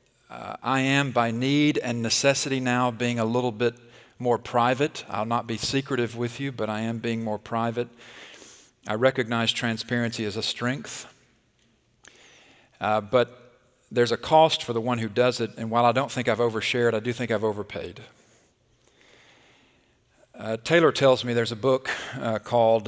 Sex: male